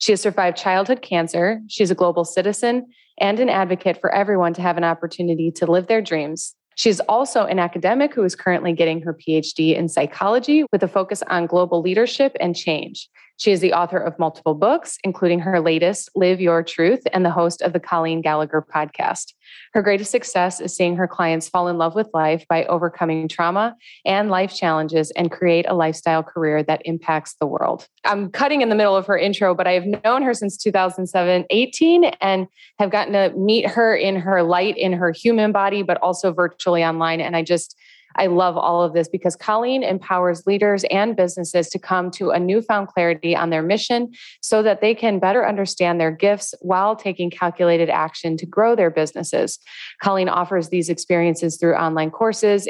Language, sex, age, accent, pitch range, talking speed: English, female, 30-49, American, 170-205 Hz, 190 wpm